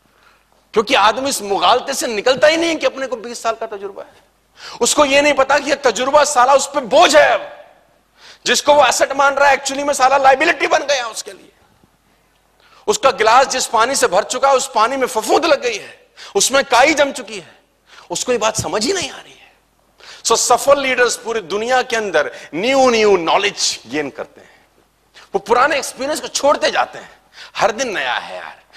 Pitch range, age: 200-275 Hz, 40-59